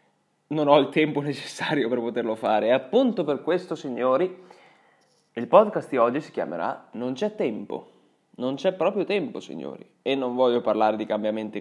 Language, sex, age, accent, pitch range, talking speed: Italian, male, 20-39, native, 115-140 Hz, 170 wpm